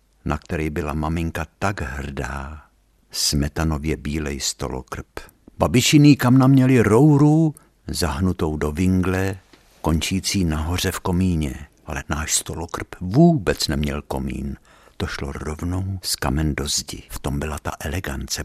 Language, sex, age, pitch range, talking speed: Czech, male, 60-79, 75-95 Hz, 125 wpm